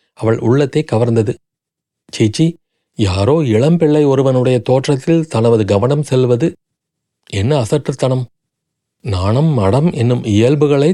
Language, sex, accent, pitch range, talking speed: Tamil, male, native, 115-155 Hz, 95 wpm